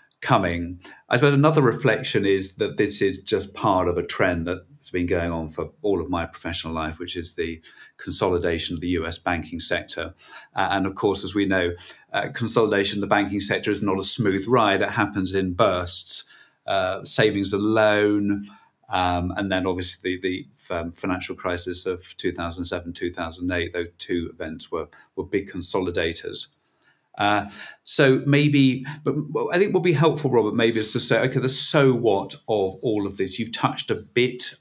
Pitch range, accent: 90-110 Hz, British